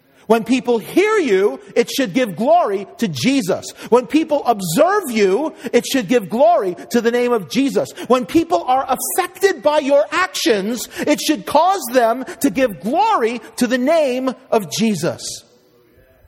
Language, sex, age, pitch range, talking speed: English, male, 40-59, 145-240 Hz, 155 wpm